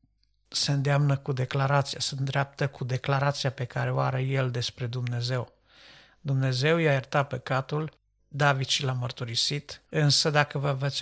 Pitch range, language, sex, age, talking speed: 125-150 Hz, Romanian, male, 50-69, 145 wpm